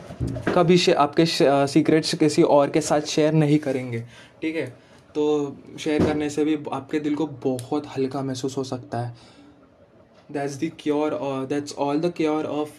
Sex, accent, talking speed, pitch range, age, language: male, native, 175 wpm, 140-180 Hz, 20-39, Hindi